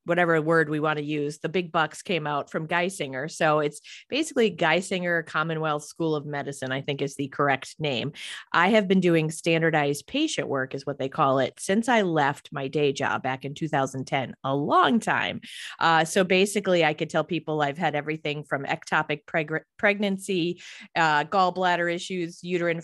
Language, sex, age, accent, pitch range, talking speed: English, female, 30-49, American, 145-180 Hz, 180 wpm